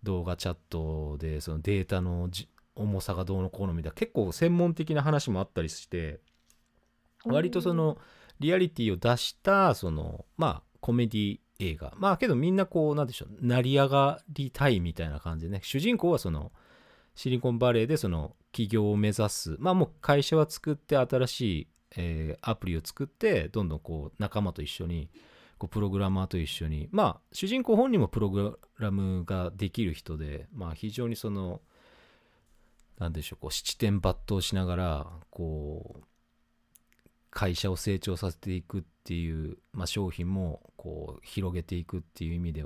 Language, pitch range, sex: Japanese, 85-120 Hz, male